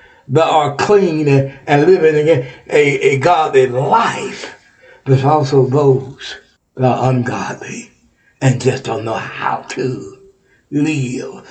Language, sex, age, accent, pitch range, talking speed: English, male, 60-79, American, 140-230 Hz, 125 wpm